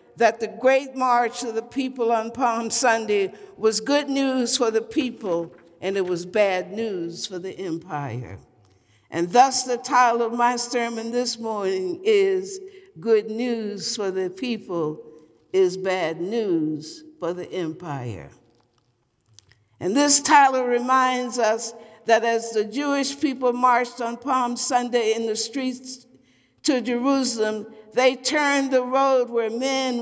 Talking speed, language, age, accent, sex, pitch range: 140 wpm, English, 60-79, American, female, 195-260 Hz